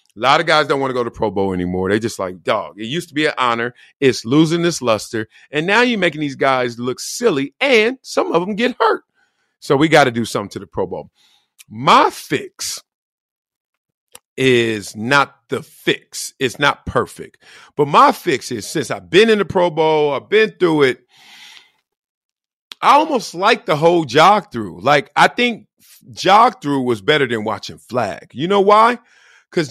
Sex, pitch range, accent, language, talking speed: male, 120-195 Hz, American, English, 190 wpm